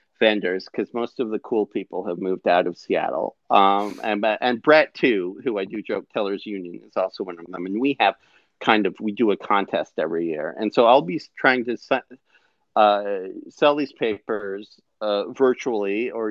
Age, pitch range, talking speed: 40-59, 105-130 Hz, 190 wpm